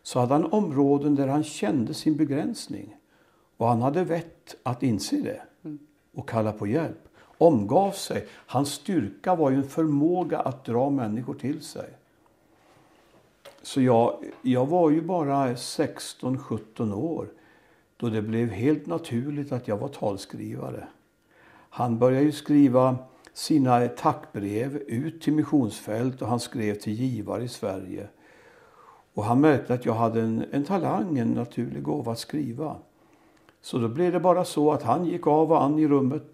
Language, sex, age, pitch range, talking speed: Swedish, male, 60-79, 120-150 Hz, 155 wpm